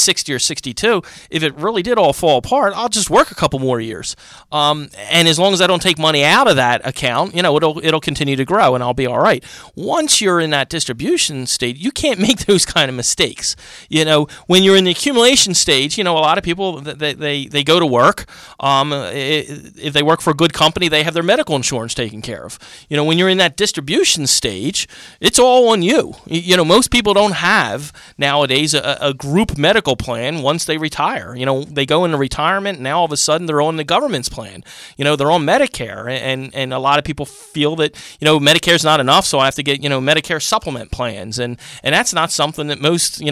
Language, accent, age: English, American, 40-59